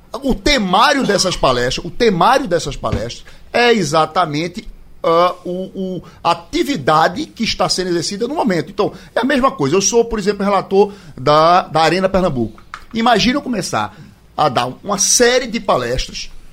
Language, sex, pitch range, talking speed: Portuguese, male, 145-210 Hz, 160 wpm